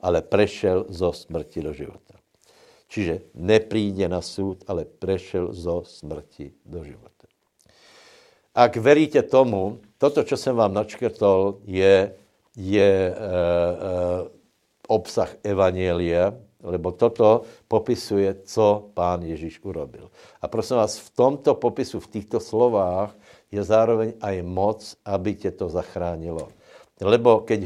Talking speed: 115 wpm